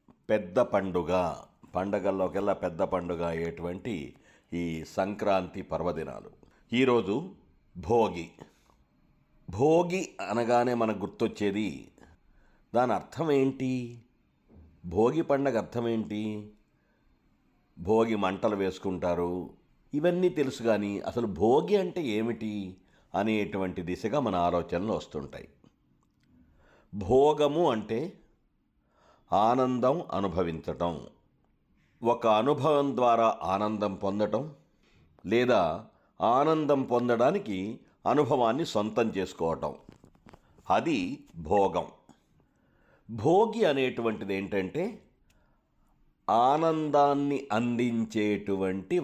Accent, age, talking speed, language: native, 60-79, 70 wpm, Telugu